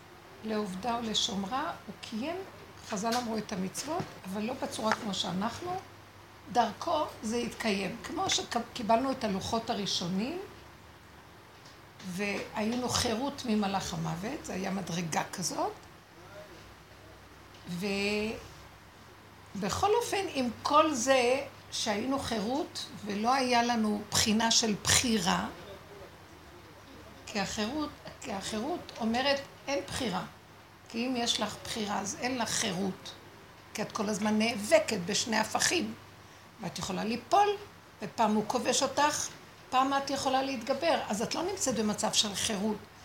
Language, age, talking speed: Hebrew, 60-79, 115 wpm